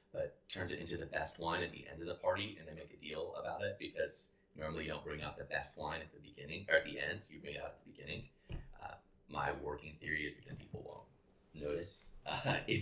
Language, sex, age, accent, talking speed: English, male, 30-49, American, 255 wpm